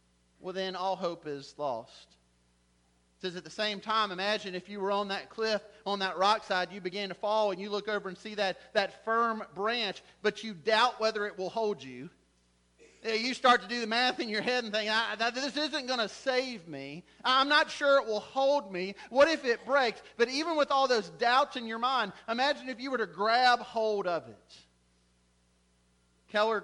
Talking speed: 205 wpm